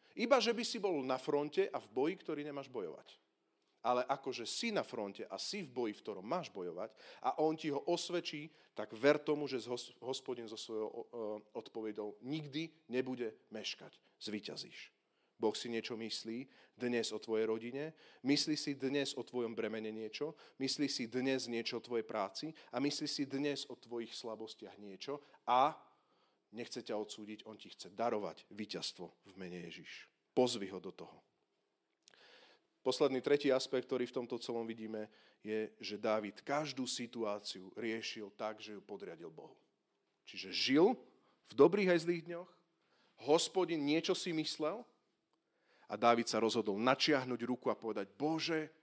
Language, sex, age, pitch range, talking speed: Slovak, male, 40-59, 110-150 Hz, 155 wpm